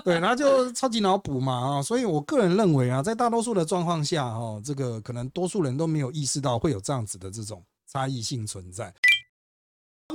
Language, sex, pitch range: Chinese, male, 115-160 Hz